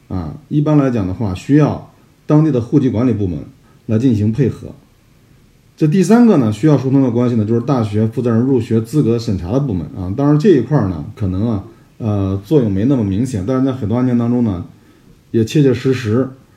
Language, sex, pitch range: Chinese, male, 110-140 Hz